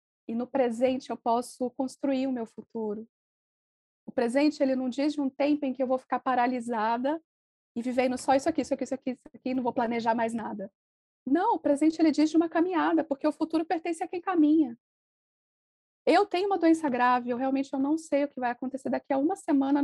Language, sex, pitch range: Portuguese, female, 245-285 Hz